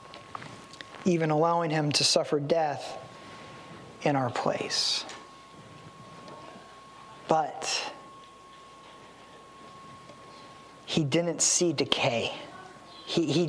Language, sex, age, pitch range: English, male, 40-59, 175-235 Hz